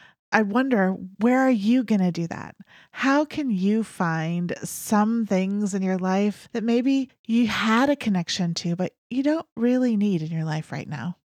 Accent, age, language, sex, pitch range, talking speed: American, 30-49, English, female, 175-220 Hz, 185 wpm